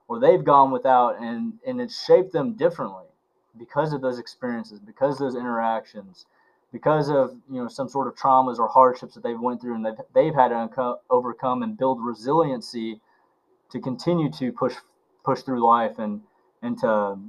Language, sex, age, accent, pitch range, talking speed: English, male, 20-39, American, 120-155 Hz, 185 wpm